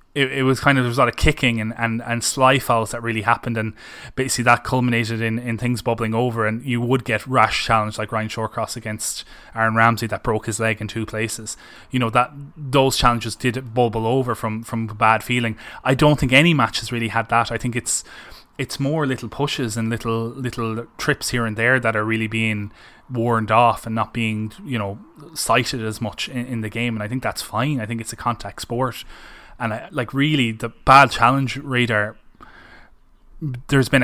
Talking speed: 215 wpm